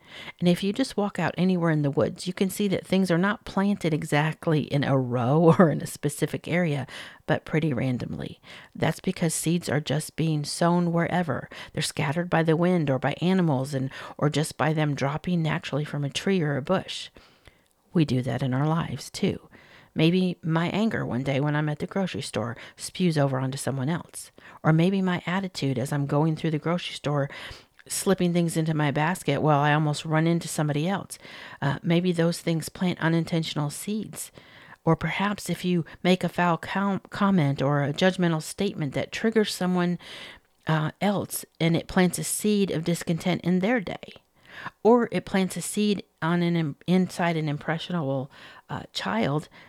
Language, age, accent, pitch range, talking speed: English, 50-69, American, 145-180 Hz, 180 wpm